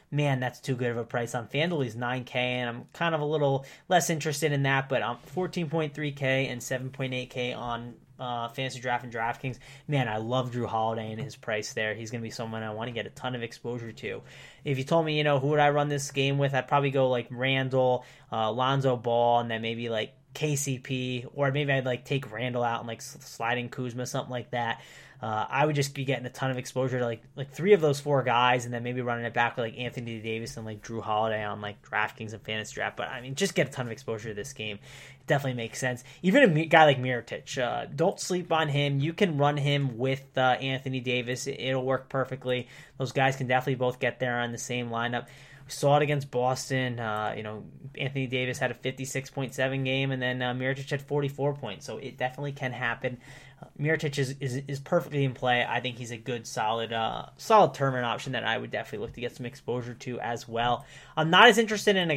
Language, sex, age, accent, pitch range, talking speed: English, male, 20-39, American, 120-140 Hz, 240 wpm